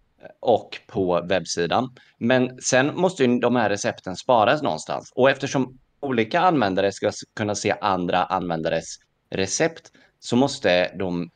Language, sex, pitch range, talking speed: Swedish, male, 90-120 Hz, 130 wpm